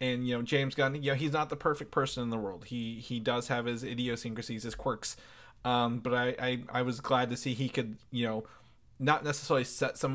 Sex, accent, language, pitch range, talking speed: male, American, English, 115-135 Hz, 235 wpm